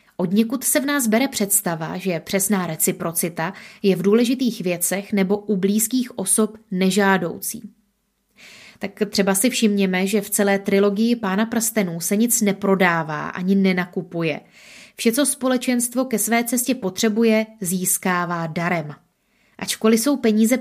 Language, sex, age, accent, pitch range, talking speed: Czech, female, 20-39, native, 190-225 Hz, 135 wpm